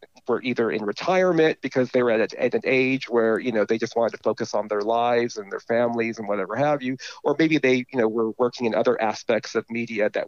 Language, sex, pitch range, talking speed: English, male, 115-135 Hz, 250 wpm